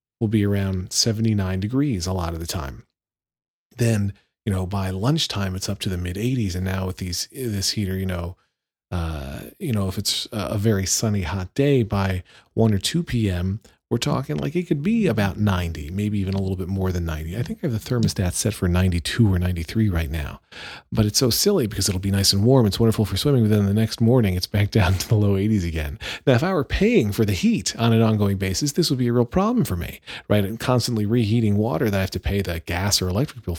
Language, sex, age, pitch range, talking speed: English, male, 40-59, 95-120 Hz, 240 wpm